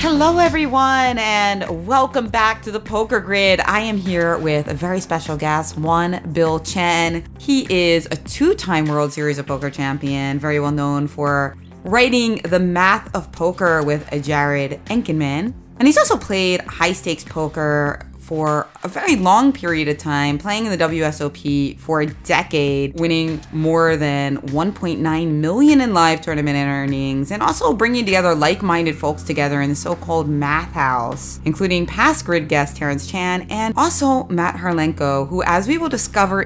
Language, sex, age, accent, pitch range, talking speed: English, female, 20-39, American, 150-200 Hz, 165 wpm